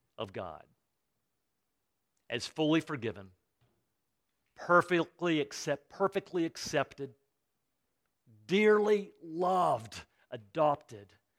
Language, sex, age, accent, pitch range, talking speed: English, male, 50-69, American, 135-180 Hz, 60 wpm